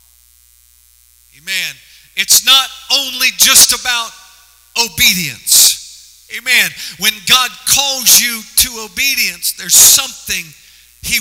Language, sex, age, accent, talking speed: English, male, 50-69, American, 90 wpm